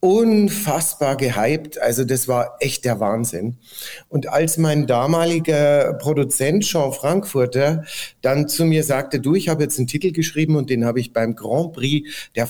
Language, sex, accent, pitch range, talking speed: German, male, German, 125-165 Hz, 165 wpm